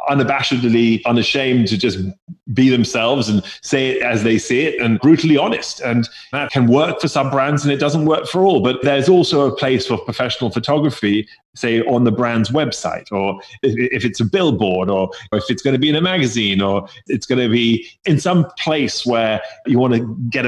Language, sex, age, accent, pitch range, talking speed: English, male, 30-49, British, 110-135 Hz, 200 wpm